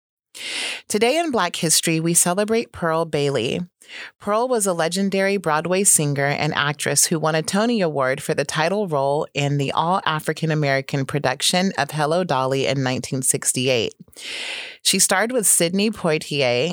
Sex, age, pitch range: female, 30-49, 145-185 Hz